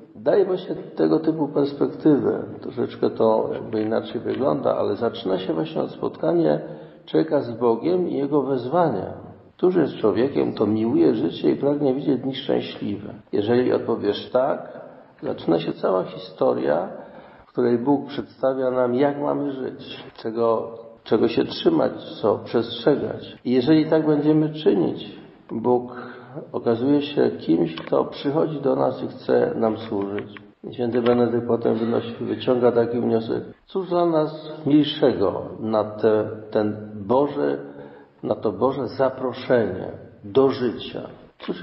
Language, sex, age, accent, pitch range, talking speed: Polish, male, 50-69, native, 110-150 Hz, 135 wpm